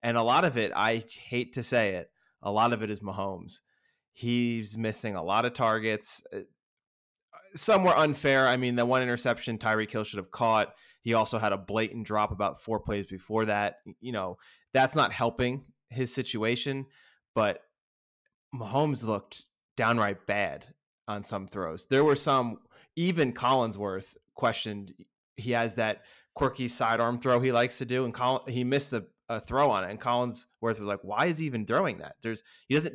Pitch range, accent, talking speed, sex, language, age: 105-130 Hz, American, 175 wpm, male, English, 20-39